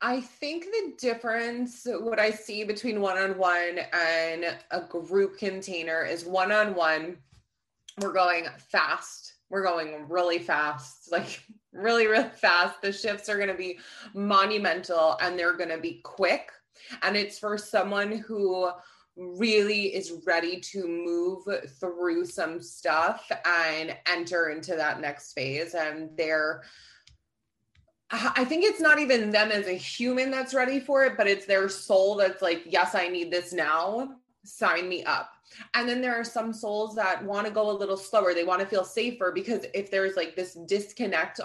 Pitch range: 175-215 Hz